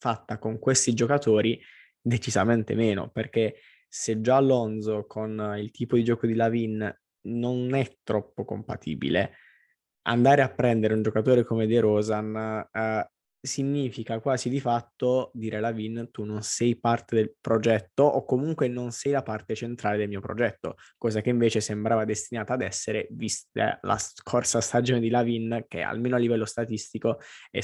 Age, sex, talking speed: 20-39, male, 155 wpm